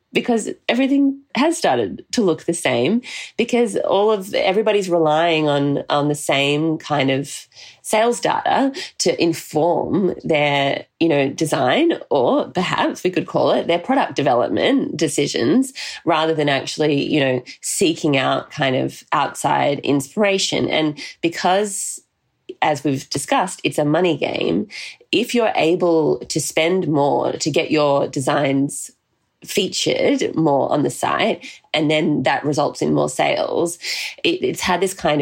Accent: Australian